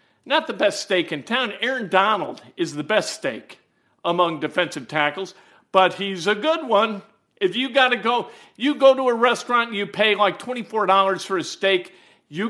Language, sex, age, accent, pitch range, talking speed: English, male, 50-69, American, 170-230 Hz, 185 wpm